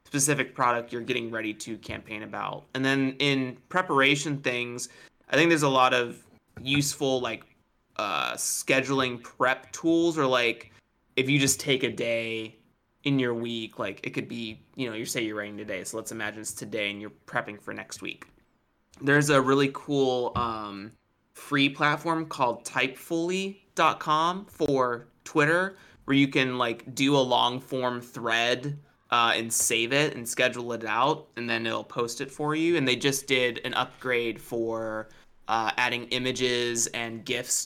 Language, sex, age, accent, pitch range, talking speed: English, male, 20-39, American, 115-140 Hz, 165 wpm